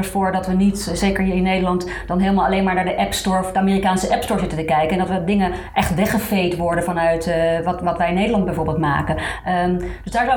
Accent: Dutch